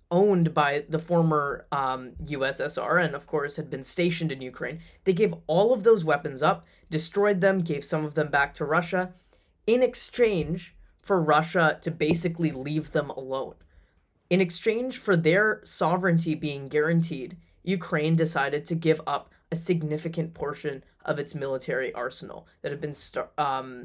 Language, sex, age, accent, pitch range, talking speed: English, female, 20-39, American, 135-170 Hz, 160 wpm